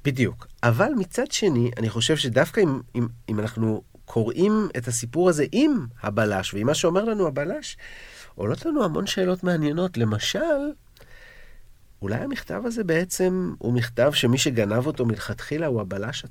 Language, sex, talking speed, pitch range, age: Hebrew, male, 145 wpm, 110-155 Hz, 50-69